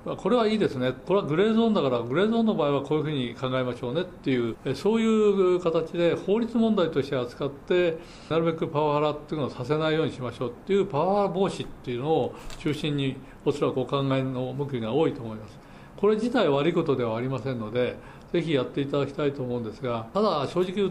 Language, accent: Japanese, native